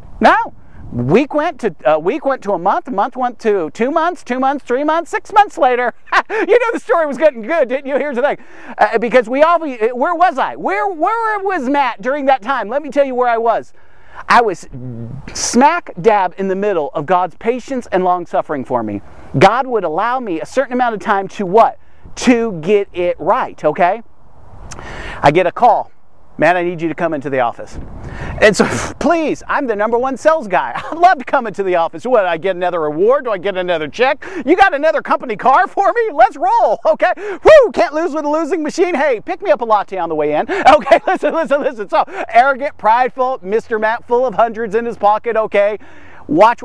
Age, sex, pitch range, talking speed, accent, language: 40-59, male, 180-300 Hz, 220 wpm, American, English